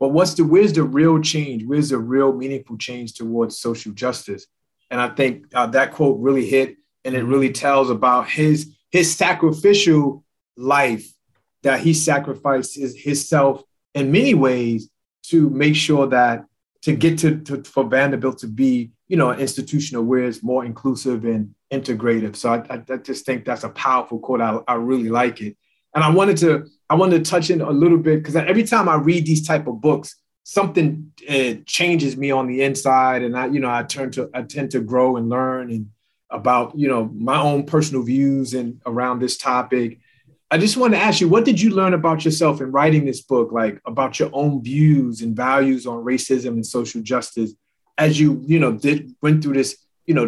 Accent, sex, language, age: American, male, English, 30-49